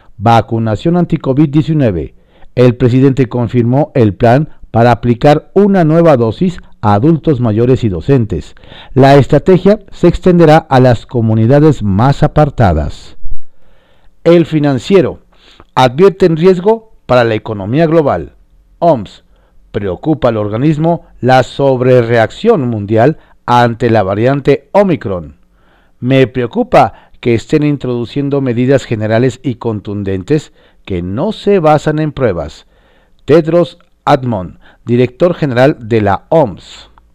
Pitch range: 115-160 Hz